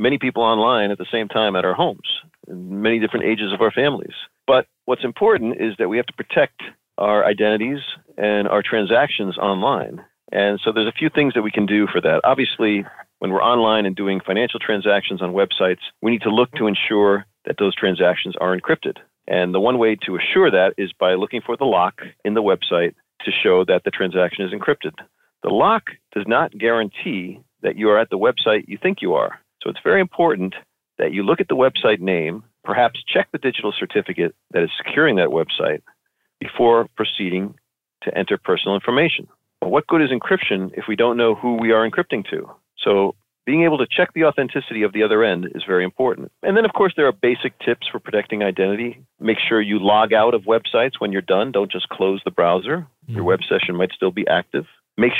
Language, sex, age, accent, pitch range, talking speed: English, male, 50-69, American, 100-120 Hz, 205 wpm